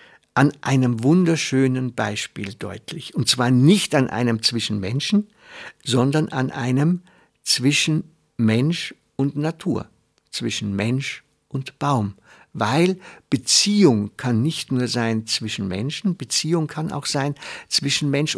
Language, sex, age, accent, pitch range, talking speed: German, male, 60-79, German, 120-160 Hz, 120 wpm